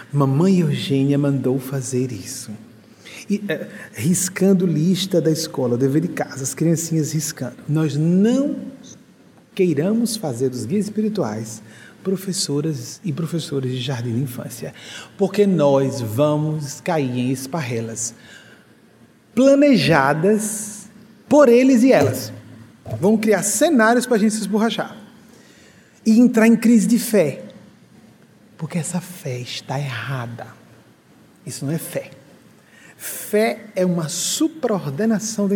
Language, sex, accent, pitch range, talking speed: Portuguese, male, Brazilian, 140-205 Hz, 120 wpm